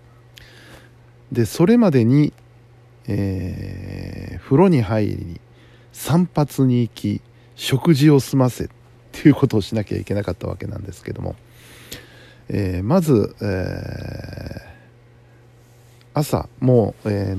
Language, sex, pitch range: Japanese, male, 105-130 Hz